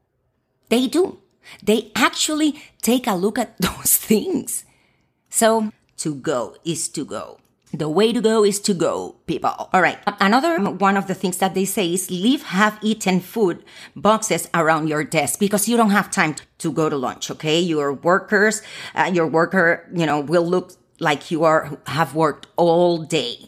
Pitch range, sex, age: 155-215 Hz, female, 40-59